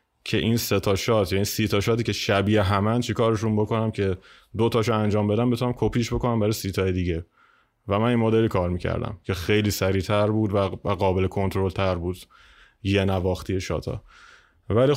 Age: 20-39